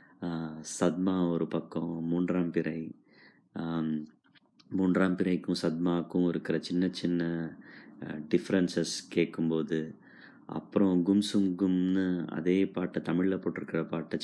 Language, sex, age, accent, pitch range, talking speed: Tamil, male, 20-39, native, 85-105 Hz, 90 wpm